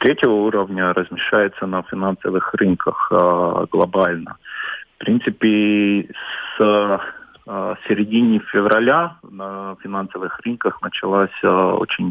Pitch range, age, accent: 95-105 Hz, 40-59, native